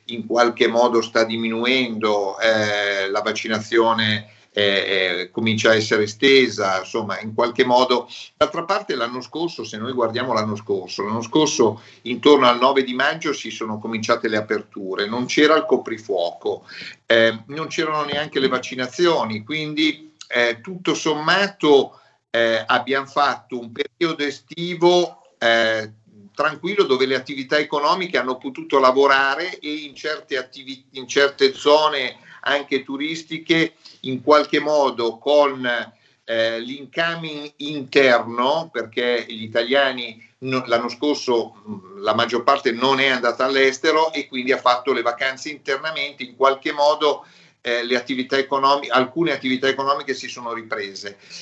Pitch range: 115-150 Hz